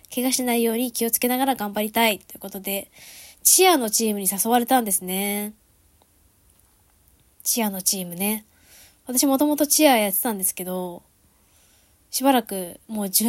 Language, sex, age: Japanese, female, 20-39